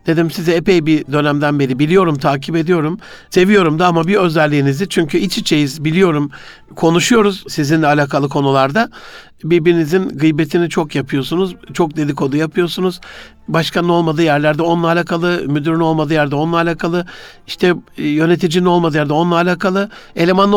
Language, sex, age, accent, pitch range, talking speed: Turkish, male, 60-79, native, 150-185 Hz, 135 wpm